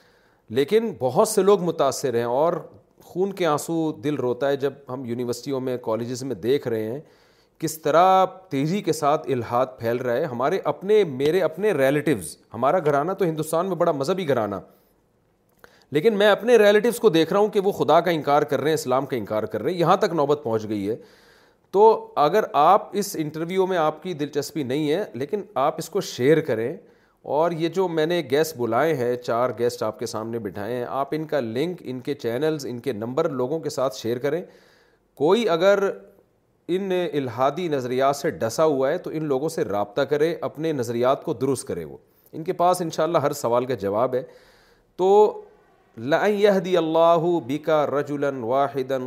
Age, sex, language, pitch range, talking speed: 40-59, male, Urdu, 125-175 Hz, 190 wpm